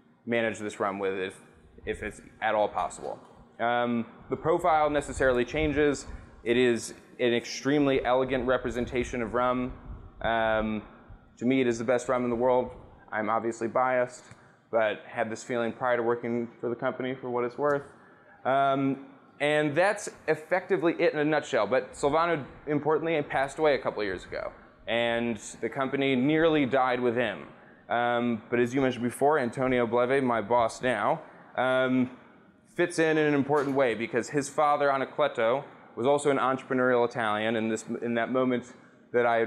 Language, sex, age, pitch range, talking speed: English, male, 20-39, 115-140 Hz, 165 wpm